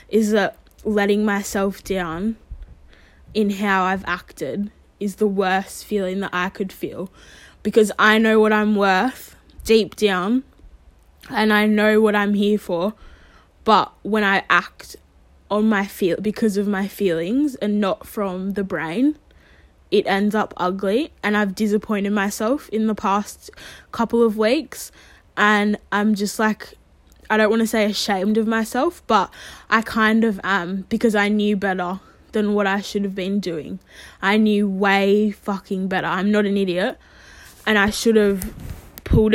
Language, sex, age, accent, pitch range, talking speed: English, female, 10-29, Australian, 195-220 Hz, 160 wpm